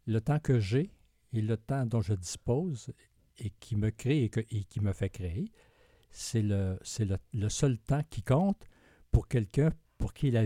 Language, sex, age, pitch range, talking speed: French, male, 60-79, 100-130 Hz, 185 wpm